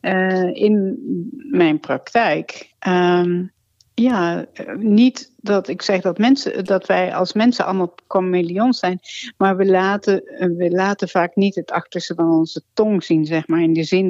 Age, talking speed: 60-79, 165 wpm